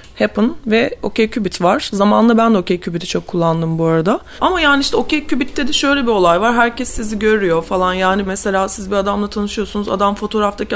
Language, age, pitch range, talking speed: Turkish, 30-49, 185-230 Hz, 200 wpm